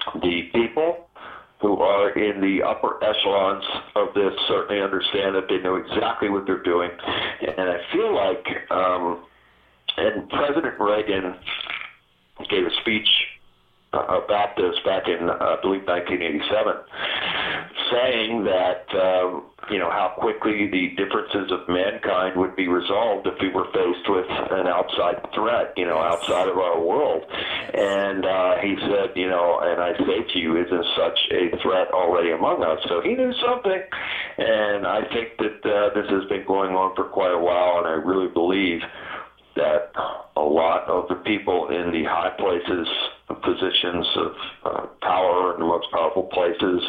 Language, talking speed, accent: English, 160 wpm, American